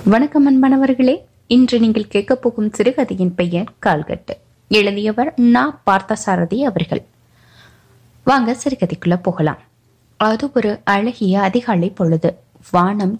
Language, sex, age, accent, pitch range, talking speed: Tamil, female, 20-39, native, 180-240 Hz, 105 wpm